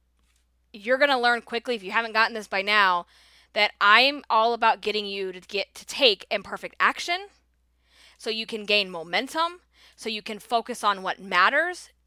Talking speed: 180 wpm